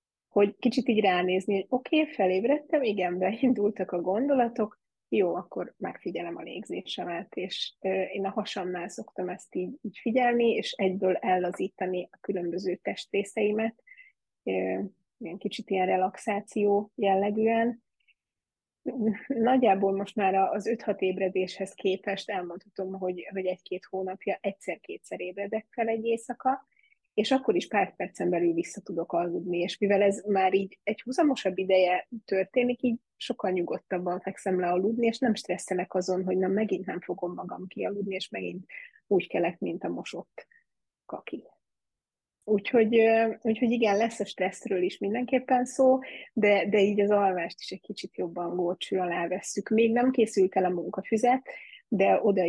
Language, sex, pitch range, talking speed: Hungarian, female, 185-230 Hz, 140 wpm